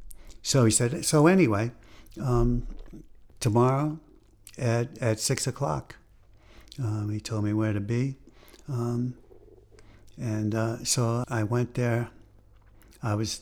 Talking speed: 120 wpm